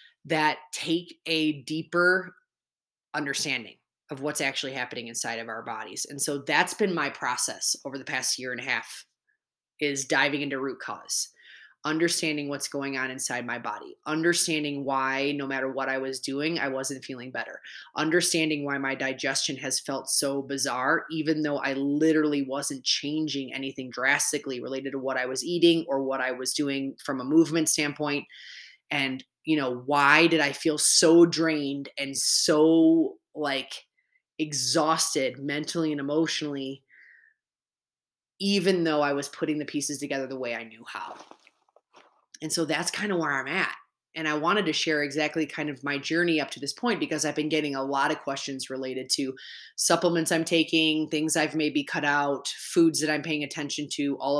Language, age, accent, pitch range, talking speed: English, 20-39, American, 135-160 Hz, 175 wpm